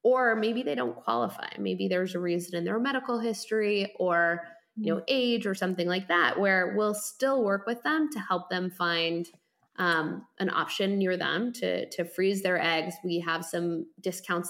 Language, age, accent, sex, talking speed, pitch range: English, 20-39, American, female, 185 wpm, 170-210 Hz